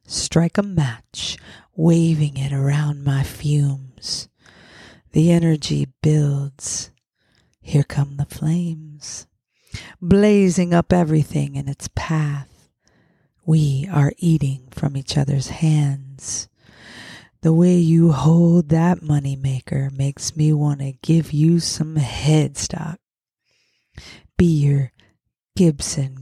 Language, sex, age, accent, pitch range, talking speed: English, female, 40-59, American, 135-160 Hz, 105 wpm